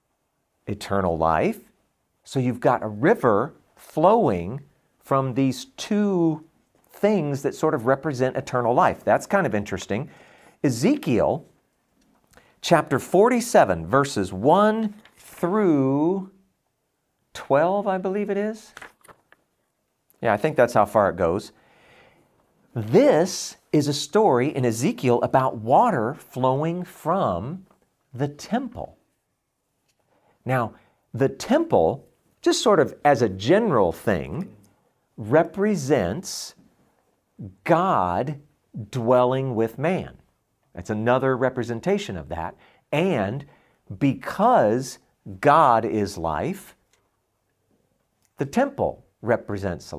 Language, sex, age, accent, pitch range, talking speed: English, male, 50-69, American, 115-185 Hz, 95 wpm